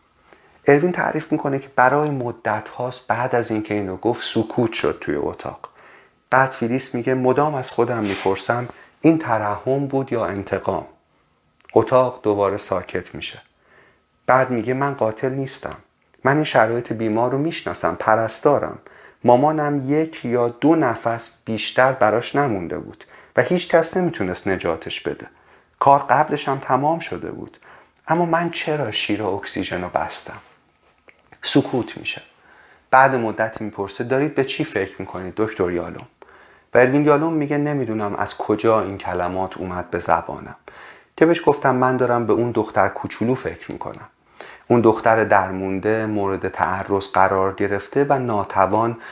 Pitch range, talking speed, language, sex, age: 105-135 Hz, 140 wpm, Persian, male, 40-59